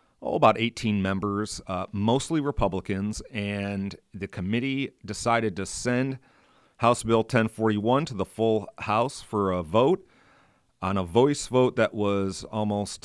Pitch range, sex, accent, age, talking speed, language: 95-115 Hz, male, American, 40-59, 140 wpm, English